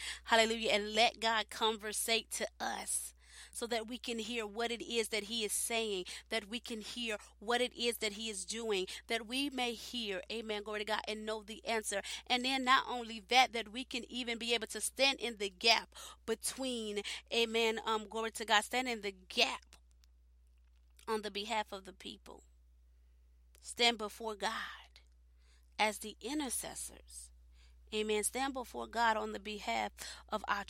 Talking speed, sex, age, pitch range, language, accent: 175 wpm, female, 30-49, 200-235 Hz, English, American